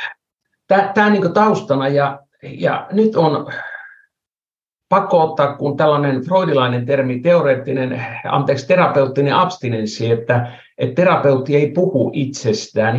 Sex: male